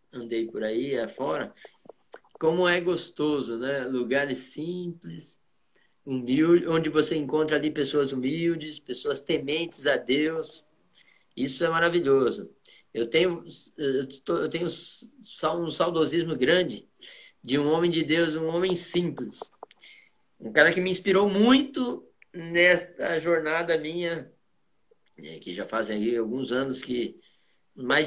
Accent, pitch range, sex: Brazilian, 140-175 Hz, male